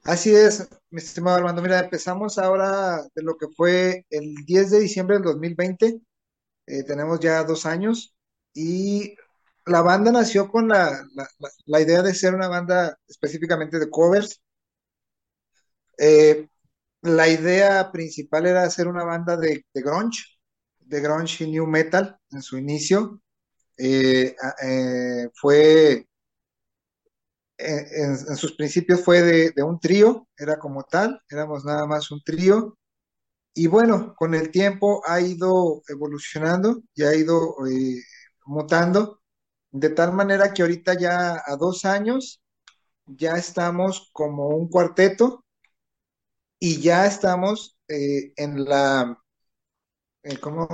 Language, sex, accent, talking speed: Spanish, male, Mexican, 130 wpm